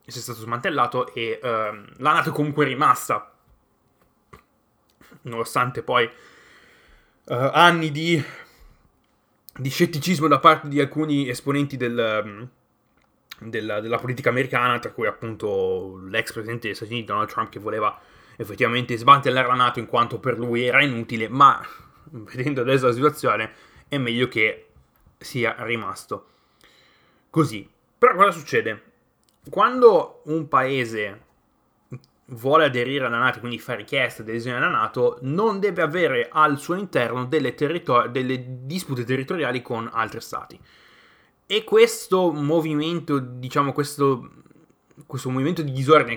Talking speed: 130 wpm